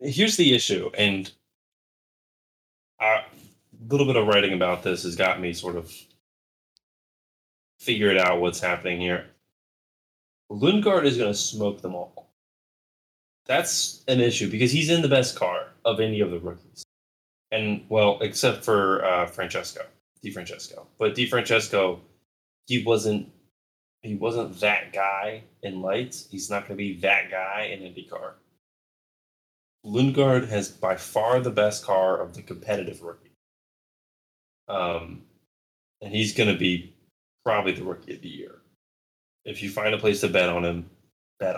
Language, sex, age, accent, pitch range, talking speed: English, male, 20-39, American, 90-125 Hz, 145 wpm